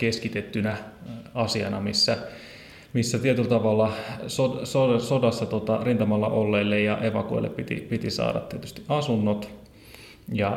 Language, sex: Finnish, male